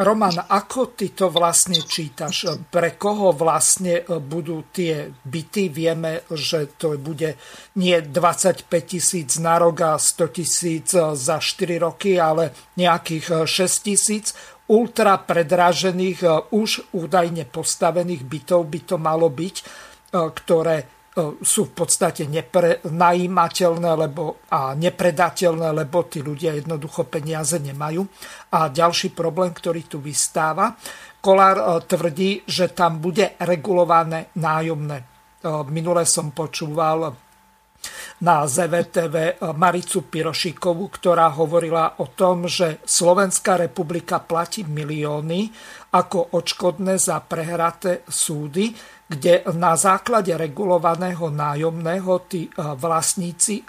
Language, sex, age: Slovak, male, 50-69